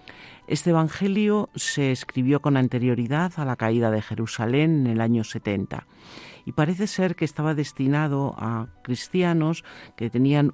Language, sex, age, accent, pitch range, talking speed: Spanish, male, 50-69, Spanish, 120-160 Hz, 140 wpm